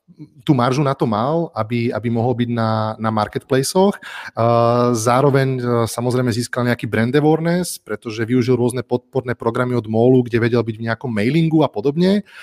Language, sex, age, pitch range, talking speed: Slovak, male, 30-49, 110-135 Hz, 165 wpm